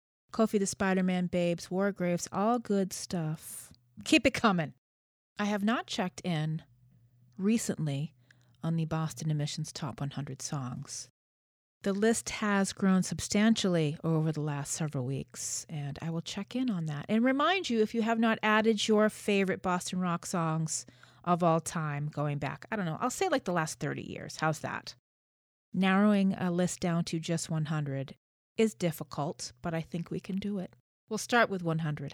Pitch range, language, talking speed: 145-205 Hz, English, 170 wpm